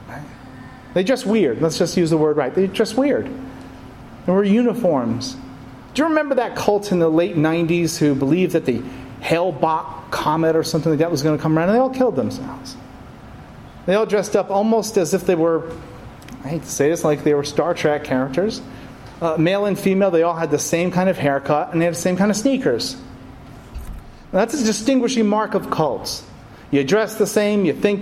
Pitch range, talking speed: 135-195 Hz, 205 wpm